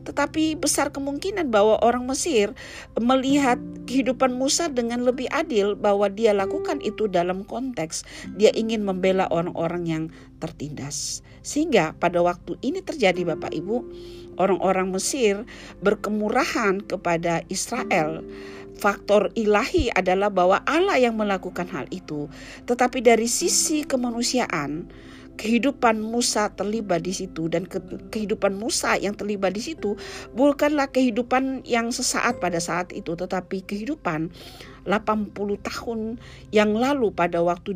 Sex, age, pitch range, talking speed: female, 50-69, 165-240 Hz, 120 wpm